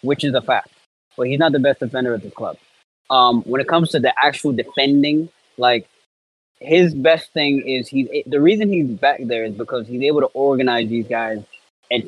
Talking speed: 215 wpm